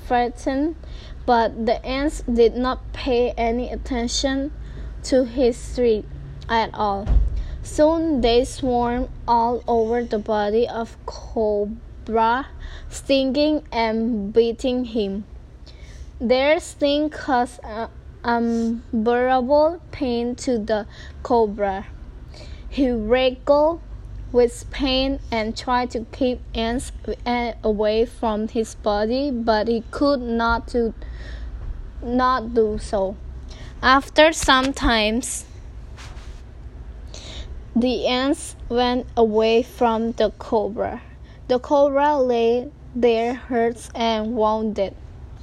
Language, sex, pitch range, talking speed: English, female, 225-260 Hz, 95 wpm